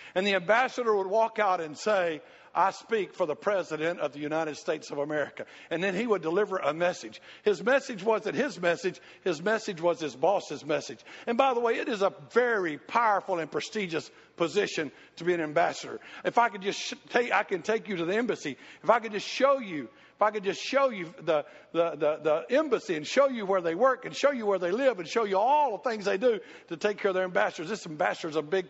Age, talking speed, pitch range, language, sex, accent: 60-79, 235 wpm, 175-220 Hz, English, male, American